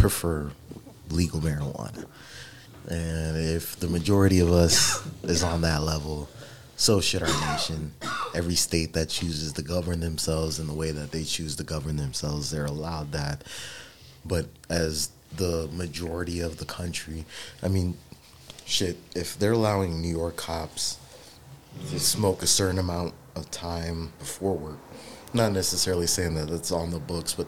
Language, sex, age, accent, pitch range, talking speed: English, male, 30-49, American, 80-95 Hz, 155 wpm